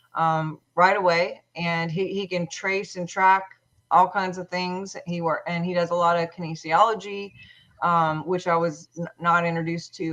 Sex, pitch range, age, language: female, 170-185 Hz, 30-49, English